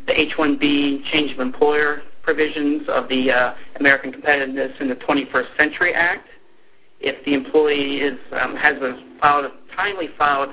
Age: 40-59